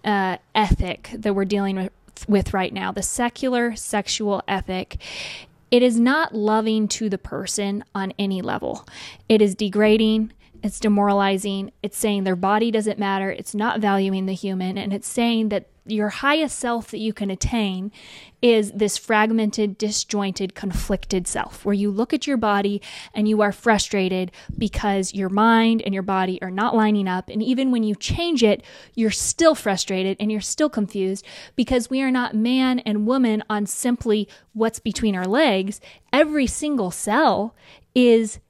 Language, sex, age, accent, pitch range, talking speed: English, female, 20-39, American, 200-245 Hz, 165 wpm